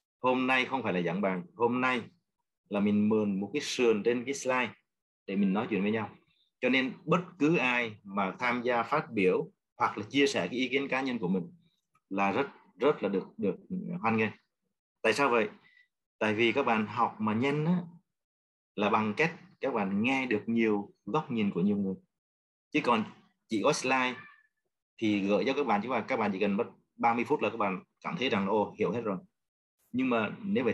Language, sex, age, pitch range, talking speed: Vietnamese, male, 30-49, 105-165 Hz, 210 wpm